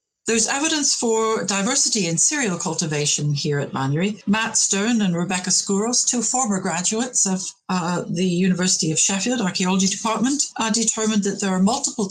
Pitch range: 160-205 Hz